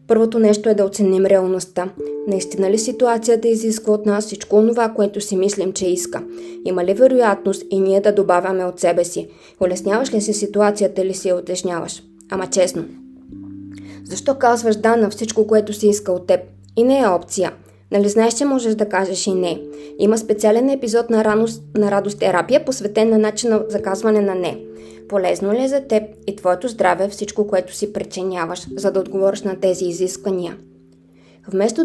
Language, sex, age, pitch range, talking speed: Bulgarian, female, 20-39, 185-220 Hz, 180 wpm